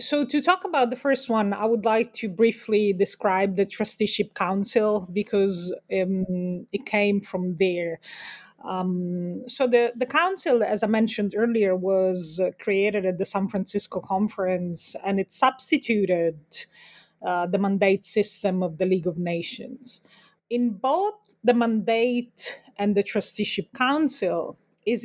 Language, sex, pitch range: English, female, 185-235 Hz